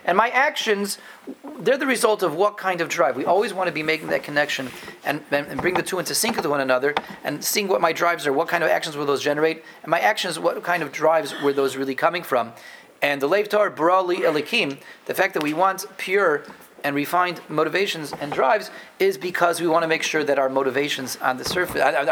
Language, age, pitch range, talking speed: English, 30-49, 145-195 Hz, 220 wpm